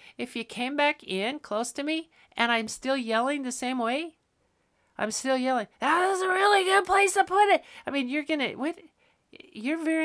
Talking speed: 205 wpm